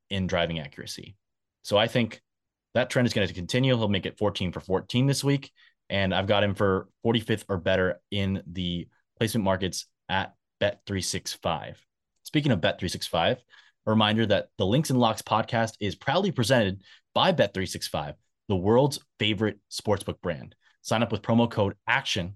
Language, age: English, 30-49